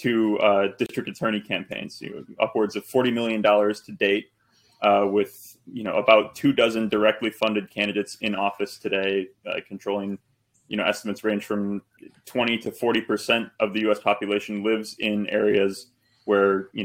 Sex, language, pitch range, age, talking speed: male, English, 100-115 Hz, 20-39, 165 wpm